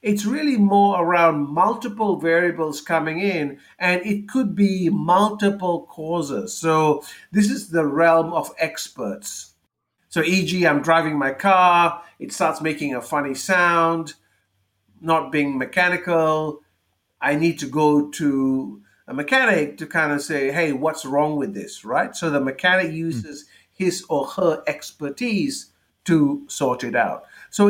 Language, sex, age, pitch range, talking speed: English, male, 50-69, 140-180 Hz, 145 wpm